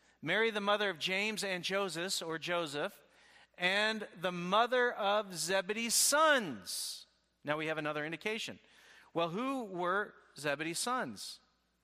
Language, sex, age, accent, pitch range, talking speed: English, male, 40-59, American, 185-230 Hz, 125 wpm